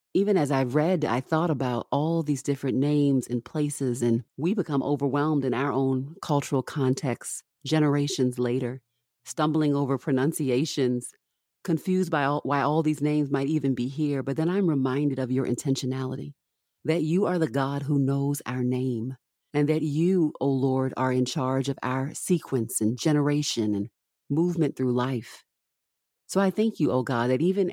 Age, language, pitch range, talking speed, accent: 40-59, English, 125-150 Hz, 175 wpm, American